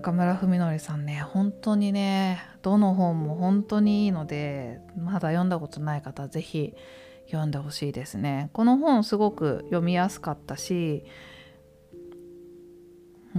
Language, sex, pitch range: Japanese, female, 135-200 Hz